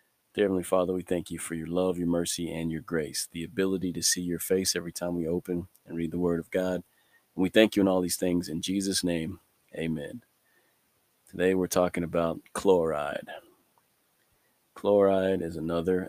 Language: English